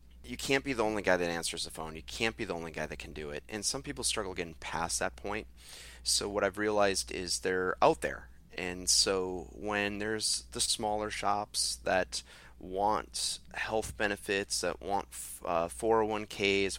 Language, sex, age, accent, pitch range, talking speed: English, male, 30-49, American, 75-105 Hz, 180 wpm